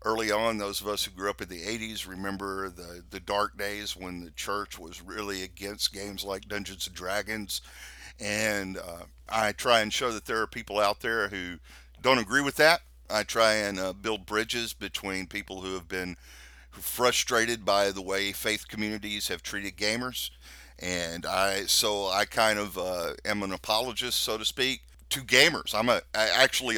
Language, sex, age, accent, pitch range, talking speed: English, male, 50-69, American, 90-110 Hz, 185 wpm